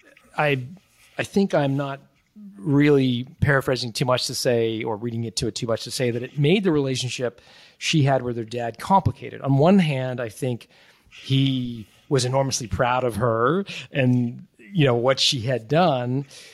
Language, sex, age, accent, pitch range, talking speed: English, male, 40-59, American, 125-170 Hz, 180 wpm